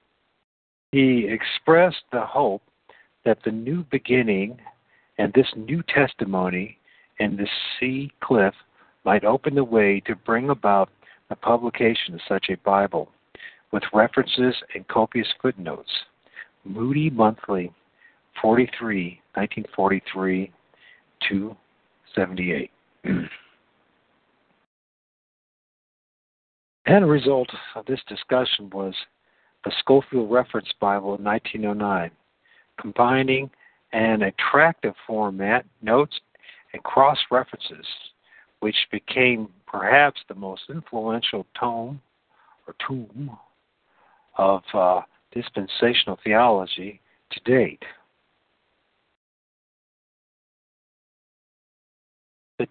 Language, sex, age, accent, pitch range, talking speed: English, male, 50-69, American, 100-130 Hz, 85 wpm